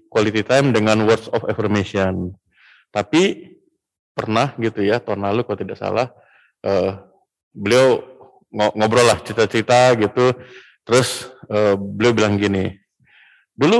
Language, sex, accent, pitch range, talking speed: Indonesian, male, native, 105-135 Hz, 115 wpm